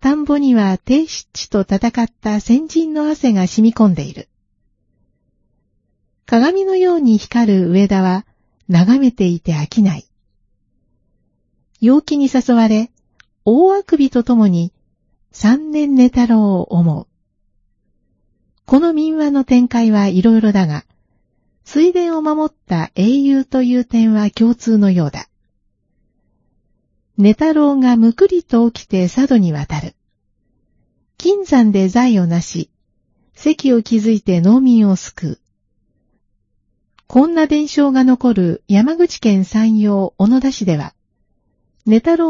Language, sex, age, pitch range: Japanese, female, 40-59, 180-270 Hz